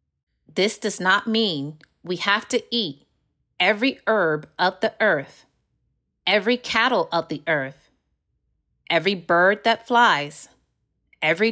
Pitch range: 160-240 Hz